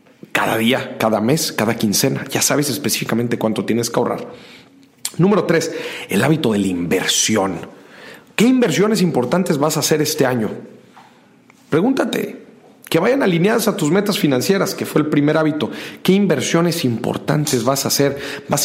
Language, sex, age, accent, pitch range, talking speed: Spanish, male, 40-59, Mexican, 120-155 Hz, 155 wpm